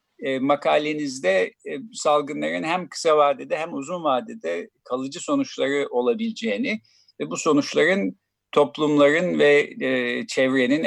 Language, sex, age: Turkish, male, 50-69